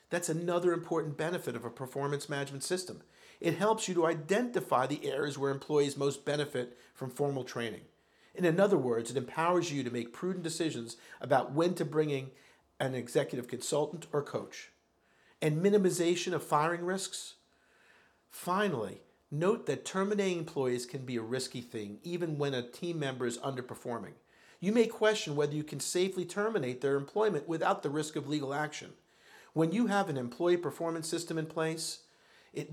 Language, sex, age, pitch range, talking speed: English, male, 50-69, 140-175 Hz, 165 wpm